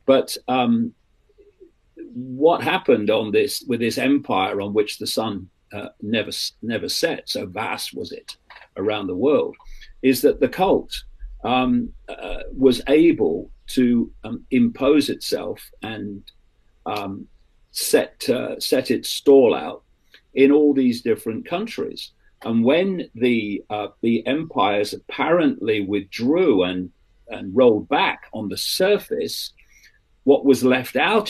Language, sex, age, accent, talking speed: English, male, 40-59, British, 130 wpm